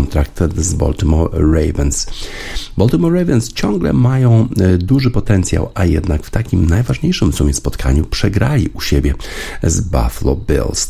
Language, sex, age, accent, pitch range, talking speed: Polish, male, 50-69, native, 80-100 Hz, 125 wpm